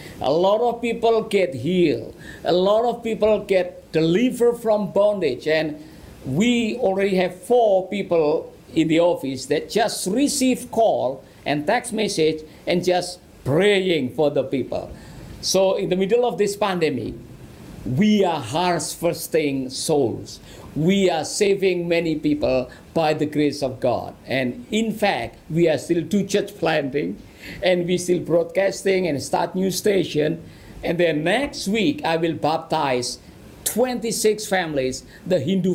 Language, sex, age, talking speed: English, male, 50-69, 145 wpm